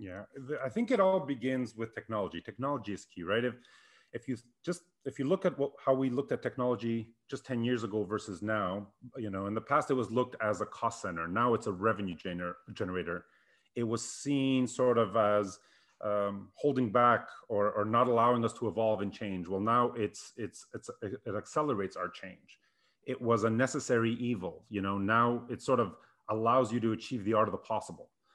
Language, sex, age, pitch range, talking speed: English, male, 30-49, 110-135 Hz, 205 wpm